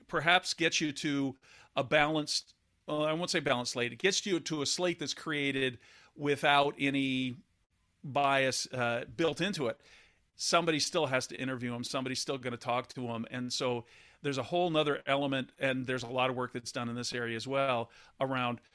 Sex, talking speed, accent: male, 190 wpm, American